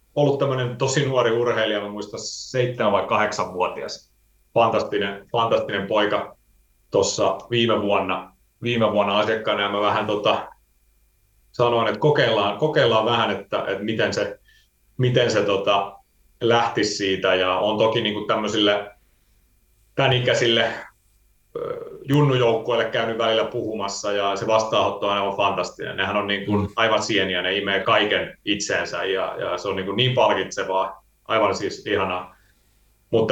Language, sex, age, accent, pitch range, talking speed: Finnish, male, 30-49, native, 100-125 Hz, 130 wpm